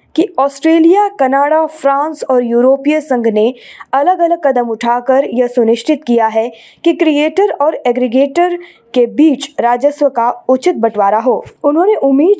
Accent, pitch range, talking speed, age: native, 245-315 Hz, 140 wpm, 20-39